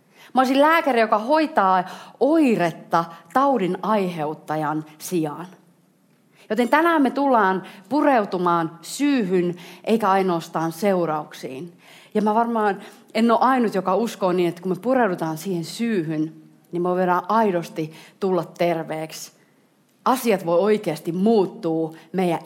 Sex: female